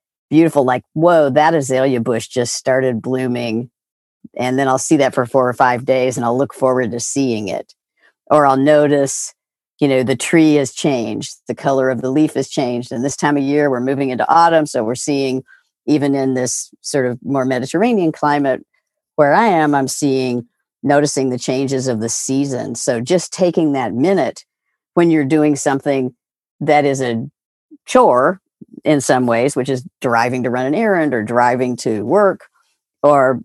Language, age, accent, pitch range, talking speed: English, 50-69, American, 125-150 Hz, 180 wpm